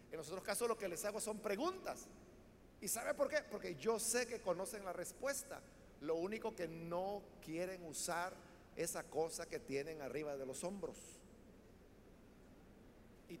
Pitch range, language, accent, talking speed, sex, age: 175-245 Hz, Spanish, Mexican, 160 wpm, male, 50-69